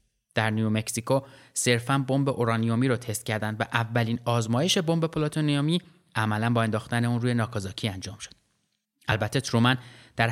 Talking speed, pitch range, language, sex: 140 wpm, 110-135 Hz, Persian, male